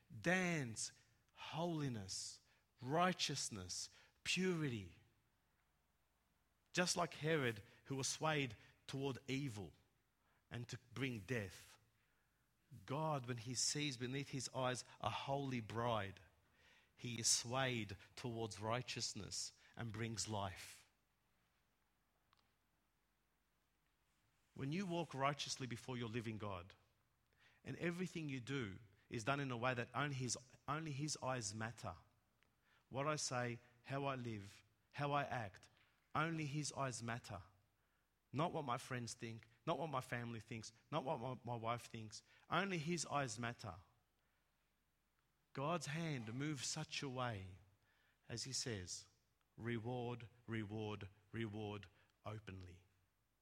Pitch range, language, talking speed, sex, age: 110-140 Hz, English, 115 wpm, male, 50-69